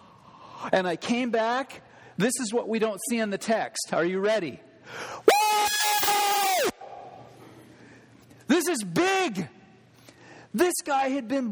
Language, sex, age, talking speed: English, male, 40-59, 125 wpm